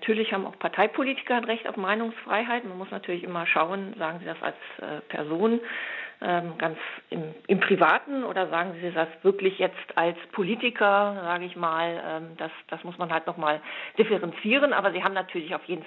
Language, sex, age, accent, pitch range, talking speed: German, female, 40-59, German, 175-225 Hz, 170 wpm